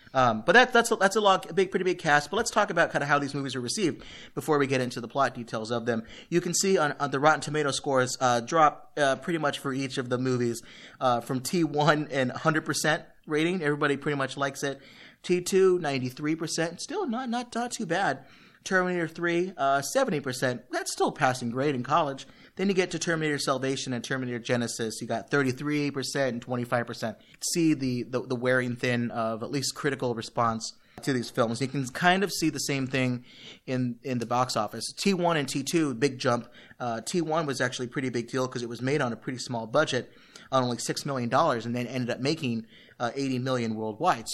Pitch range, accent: 125-160 Hz, American